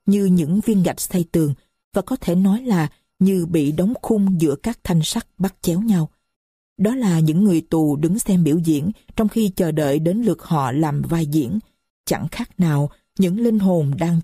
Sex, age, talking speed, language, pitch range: female, 50-69, 200 wpm, Vietnamese, 160-200 Hz